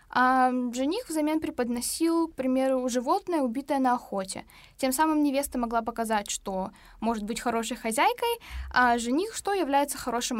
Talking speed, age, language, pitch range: 145 wpm, 10-29, Russian, 235-315 Hz